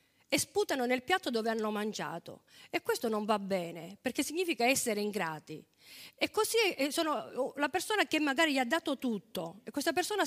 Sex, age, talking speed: female, 50-69, 175 wpm